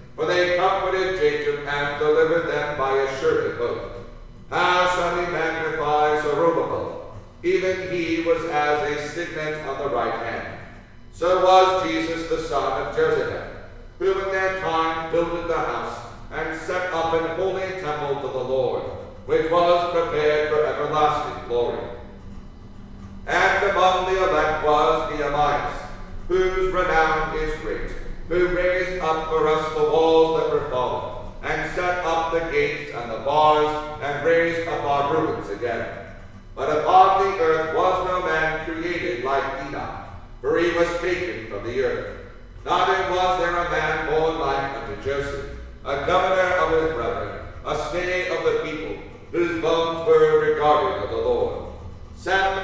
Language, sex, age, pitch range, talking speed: English, male, 50-69, 150-185 Hz, 150 wpm